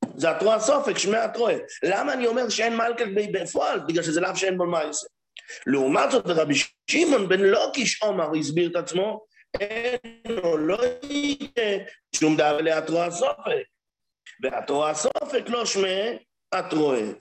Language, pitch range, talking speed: English, 190-250 Hz, 135 wpm